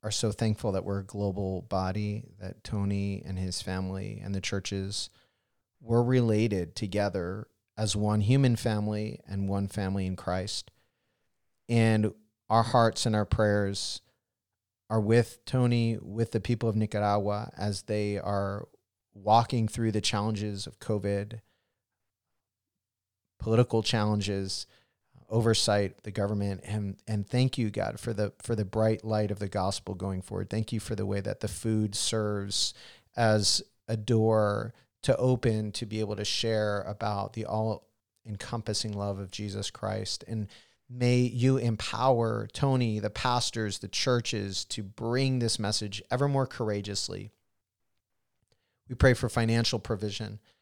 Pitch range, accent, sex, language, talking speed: 100-115 Hz, American, male, English, 140 wpm